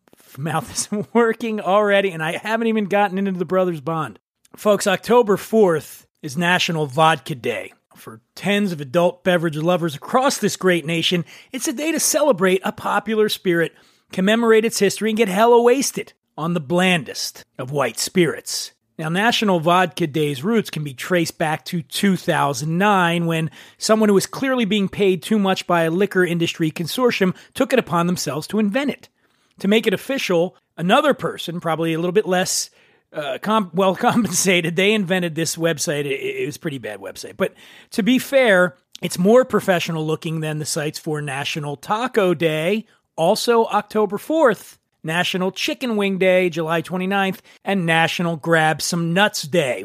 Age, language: 30-49, English